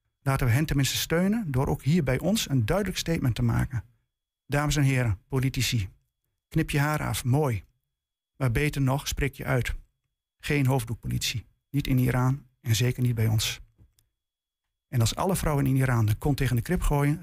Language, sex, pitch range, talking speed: Dutch, male, 120-150 Hz, 180 wpm